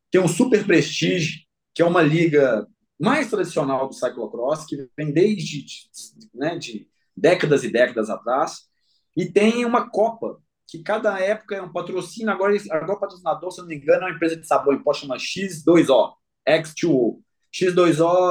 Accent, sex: Brazilian, male